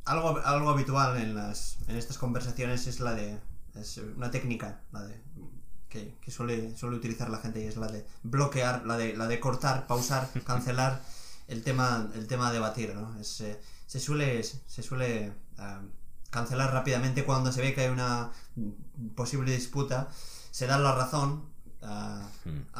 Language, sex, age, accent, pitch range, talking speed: Spanish, male, 20-39, Spanish, 115-135 Hz, 170 wpm